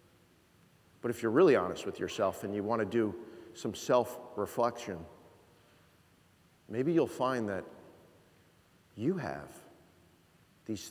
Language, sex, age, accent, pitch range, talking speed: English, male, 40-59, American, 130-180 Hz, 115 wpm